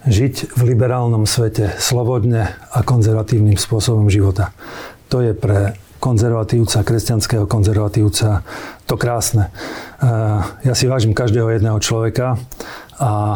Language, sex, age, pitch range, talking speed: Slovak, male, 40-59, 110-125 Hz, 110 wpm